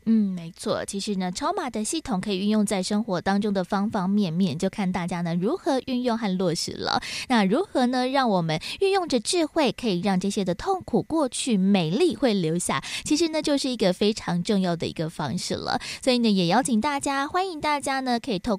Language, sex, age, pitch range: Chinese, female, 20-39, 190-275 Hz